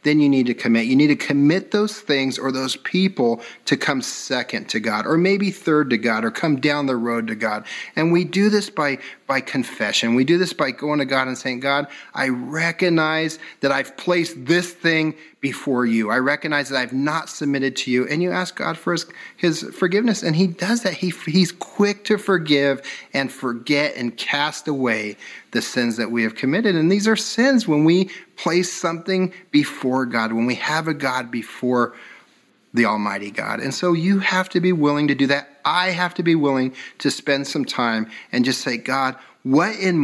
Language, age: English, 40-59